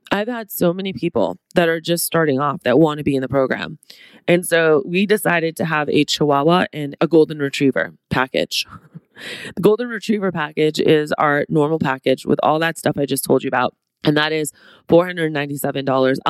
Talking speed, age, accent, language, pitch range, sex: 190 wpm, 20-39, American, English, 145-195 Hz, female